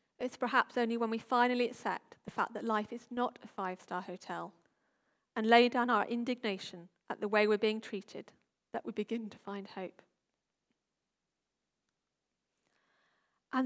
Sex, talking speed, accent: female, 150 wpm, British